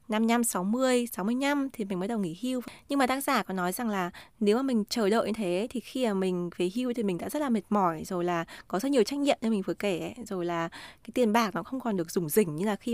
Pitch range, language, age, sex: 185-245 Hz, Vietnamese, 20-39, female